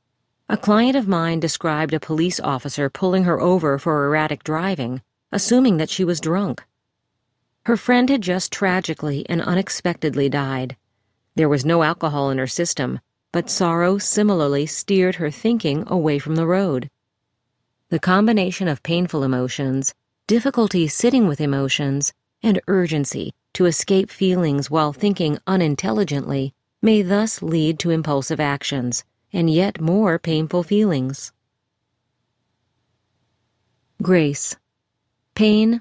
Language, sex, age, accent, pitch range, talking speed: English, female, 40-59, American, 130-185 Hz, 125 wpm